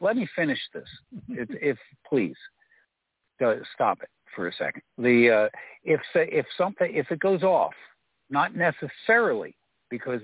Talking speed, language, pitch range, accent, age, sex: 140 wpm, English, 120-180 Hz, American, 60-79, male